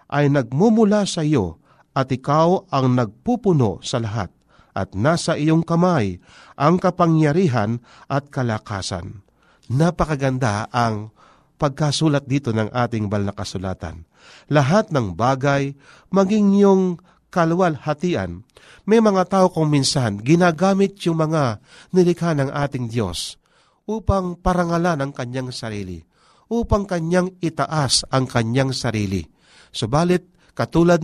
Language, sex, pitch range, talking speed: Filipino, male, 115-170 Hz, 110 wpm